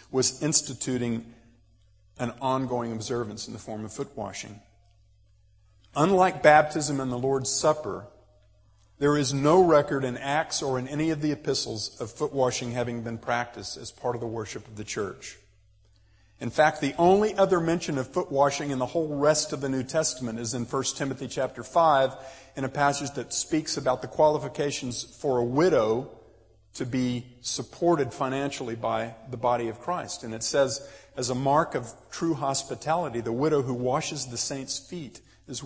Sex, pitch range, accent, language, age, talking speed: male, 110-140 Hz, American, English, 50-69, 175 wpm